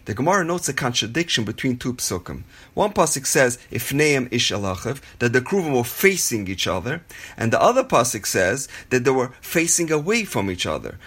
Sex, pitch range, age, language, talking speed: male, 110-150 Hz, 30-49, English, 180 wpm